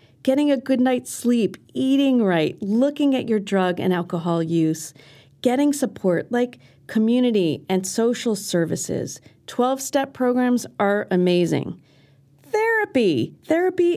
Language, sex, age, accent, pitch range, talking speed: English, female, 40-59, American, 175-255 Hz, 115 wpm